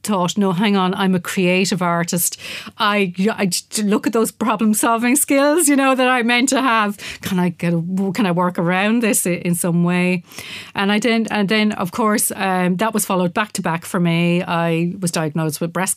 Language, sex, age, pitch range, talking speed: English, female, 40-59, 175-215 Hz, 215 wpm